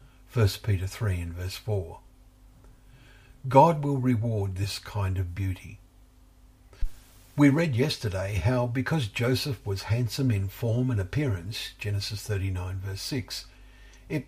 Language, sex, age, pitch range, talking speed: English, male, 50-69, 95-125 Hz, 125 wpm